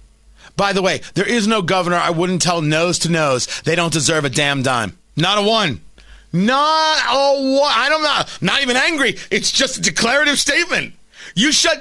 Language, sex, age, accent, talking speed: English, male, 40-59, American, 190 wpm